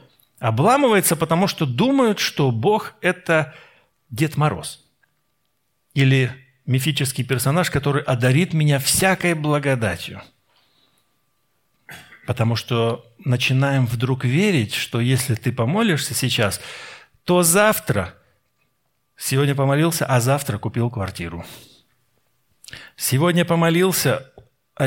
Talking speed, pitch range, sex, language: 90 wpm, 120-160 Hz, male, Russian